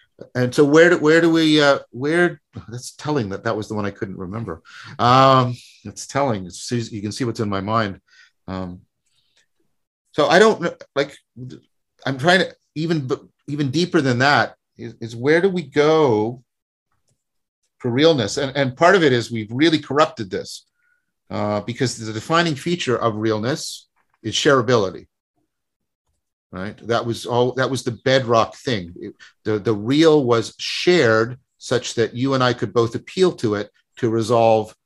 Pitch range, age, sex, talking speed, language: 110-145 Hz, 50-69, male, 165 wpm, English